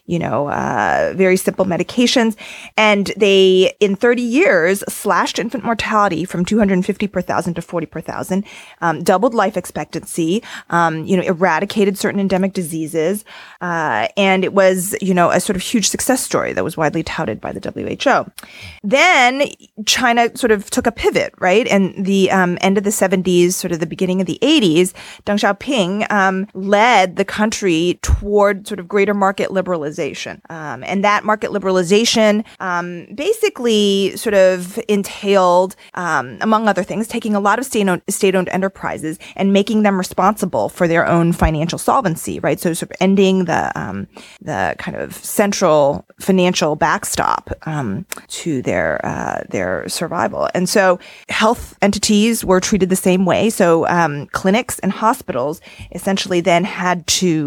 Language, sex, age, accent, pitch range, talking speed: English, female, 30-49, American, 180-210 Hz, 160 wpm